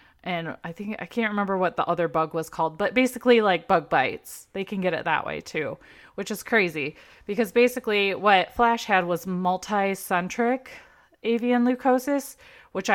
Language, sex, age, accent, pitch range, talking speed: English, female, 20-39, American, 170-225 Hz, 170 wpm